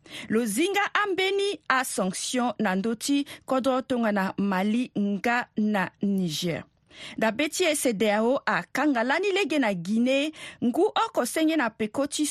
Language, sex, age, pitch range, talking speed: French, female, 40-59, 210-295 Hz, 115 wpm